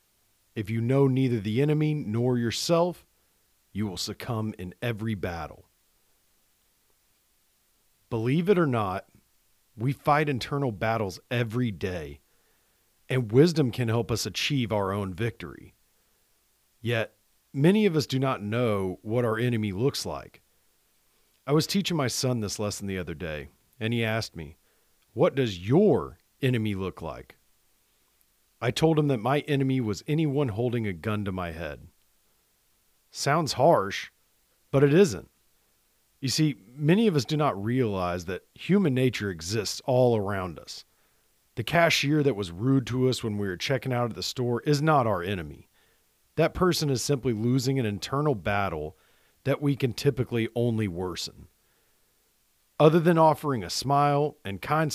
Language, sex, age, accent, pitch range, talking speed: English, male, 40-59, American, 105-140 Hz, 150 wpm